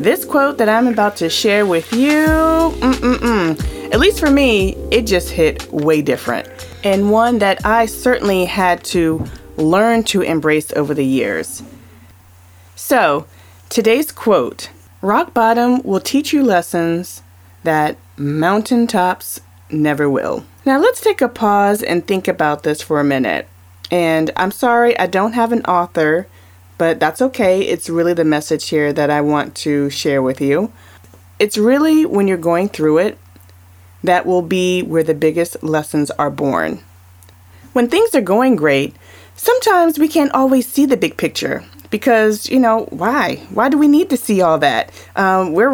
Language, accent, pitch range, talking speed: English, American, 150-240 Hz, 165 wpm